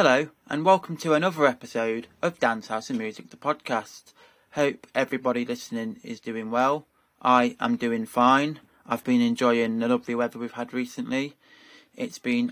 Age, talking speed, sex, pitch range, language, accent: 20-39, 165 wpm, male, 120-145 Hz, English, British